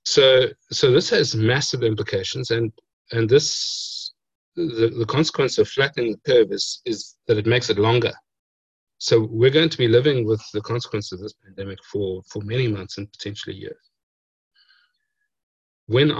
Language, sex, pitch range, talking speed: English, male, 105-135 Hz, 160 wpm